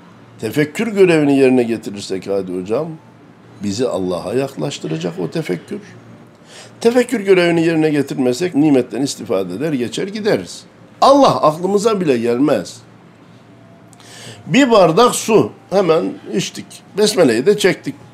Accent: native